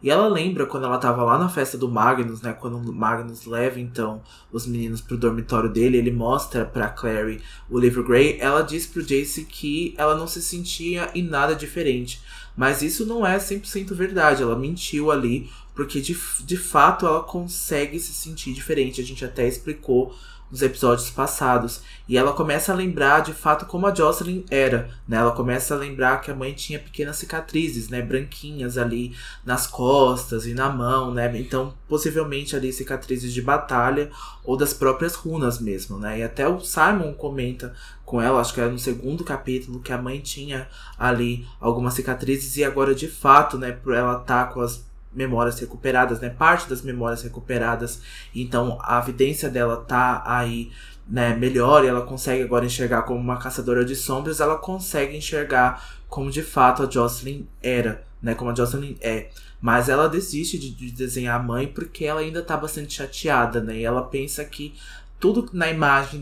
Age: 20-39